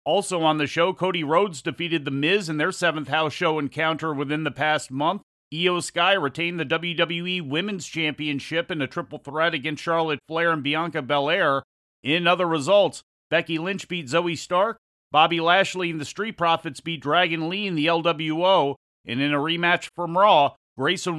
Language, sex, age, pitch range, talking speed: English, male, 40-59, 150-180 Hz, 180 wpm